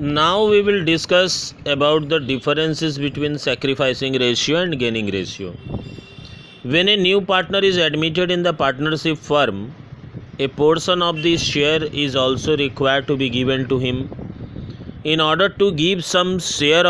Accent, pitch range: native, 140-175 Hz